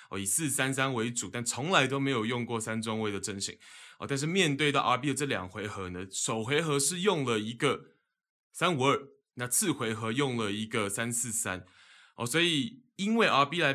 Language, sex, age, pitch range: Chinese, male, 20-39, 110-145 Hz